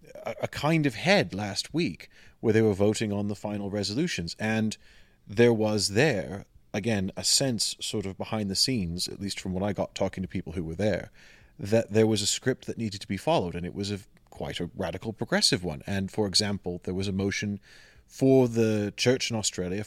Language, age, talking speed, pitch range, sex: English, 30-49, 210 wpm, 100-120 Hz, male